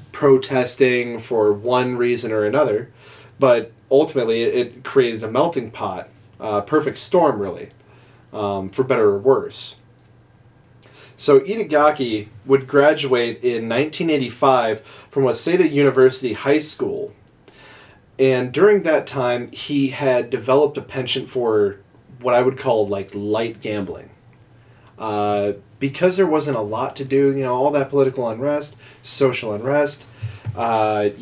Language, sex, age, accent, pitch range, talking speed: English, male, 30-49, American, 115-150 Hz, 130 wpm